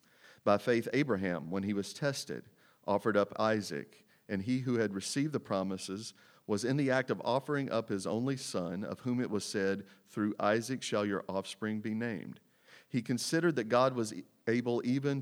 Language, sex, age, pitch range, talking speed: English, male, 40-59, 105-125 Hz, 180 wpm